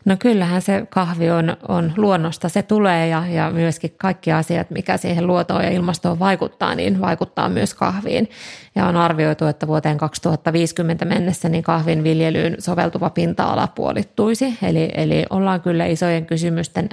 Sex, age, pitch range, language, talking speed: female, 30-49, 160-180 Hz, Finnish, 150 wpm